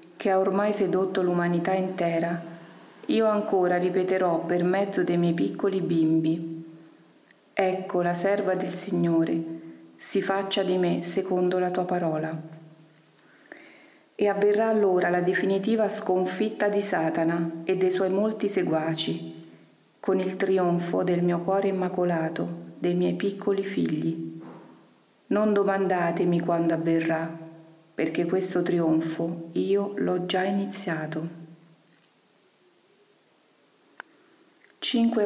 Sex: female